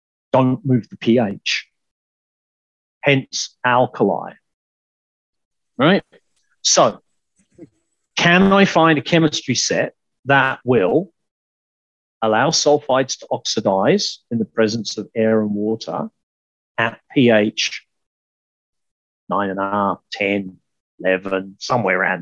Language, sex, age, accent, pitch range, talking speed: English, male, 40-59, British, 100-130 Hz, 90 wpm